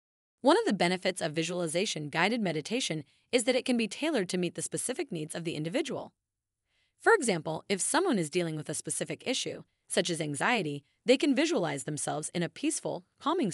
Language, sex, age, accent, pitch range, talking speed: English, female, 30-49, American, 160-240 Hz, 185 wpm